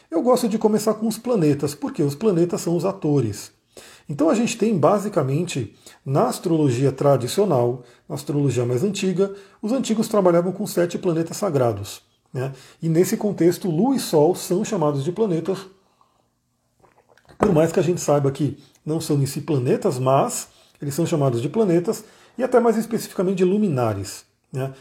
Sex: male